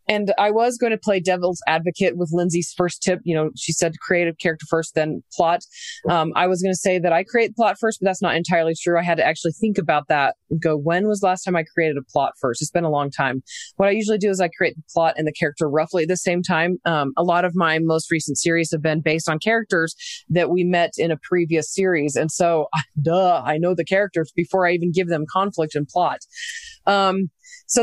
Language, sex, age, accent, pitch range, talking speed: English, female, 20-39, American, 160-190 Hz, 255 wpm